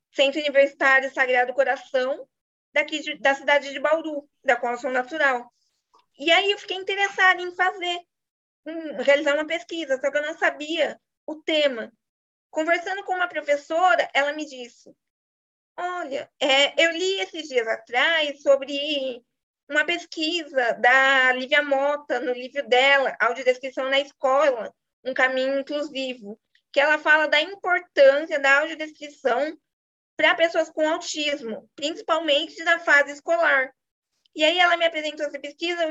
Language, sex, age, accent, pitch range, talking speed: Portuguese, female, 20-39, Brazilian, 275-330 Hz, 140 wpm